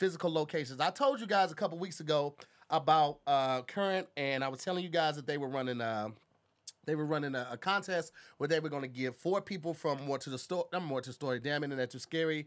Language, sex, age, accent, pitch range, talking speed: English, male, 30-49, American, 145-185 Hz, 240 wpm